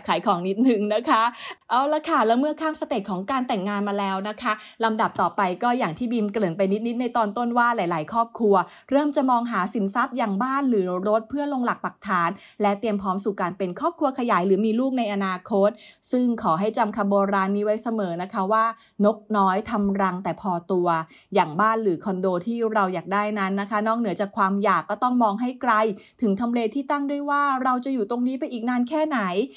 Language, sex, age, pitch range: English, female, 20-39, 190-235 Hz